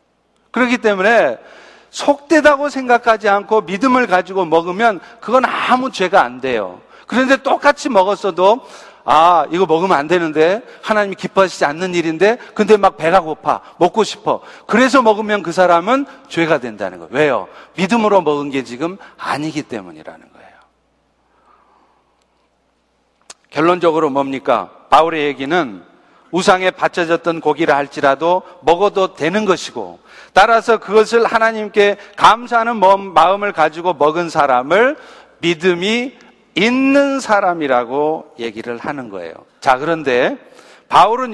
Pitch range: 160-230 Hz